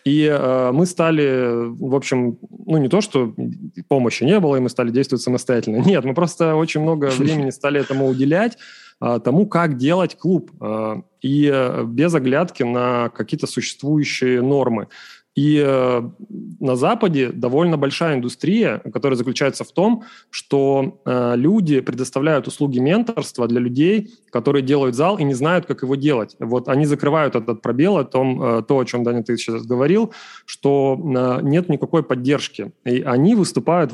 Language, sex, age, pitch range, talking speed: Russian, male, 20-39, 125-160 Hz, 145 wpm